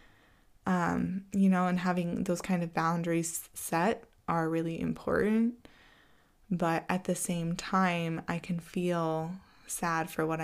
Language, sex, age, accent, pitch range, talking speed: English, female, 20-39, American, 165-185 Hz, 140 wpm